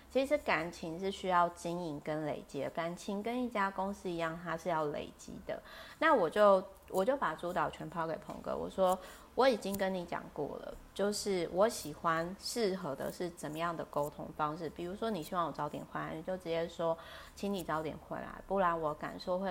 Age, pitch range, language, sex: 20-39, 165-200 Hz, Chinese, female